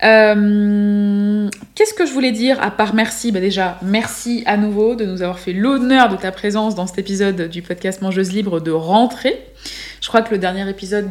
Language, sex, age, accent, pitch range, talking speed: French, female, 20-39, French, 185-230 Hz, 200 wpm